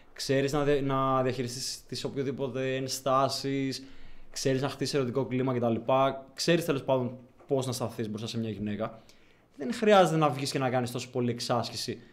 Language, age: Greek, 20-39